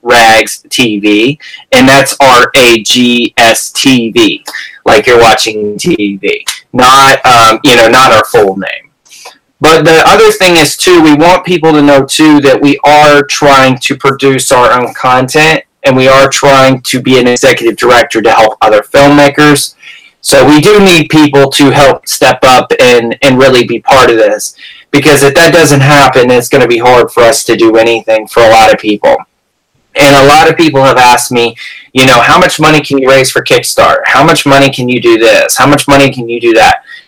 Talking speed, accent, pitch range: 200 wpm, American, 125-155 Hz